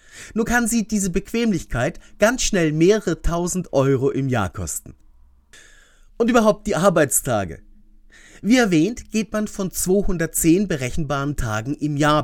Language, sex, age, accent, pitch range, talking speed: German, male, 30-49, German, 130-200 Hz, 130 wpm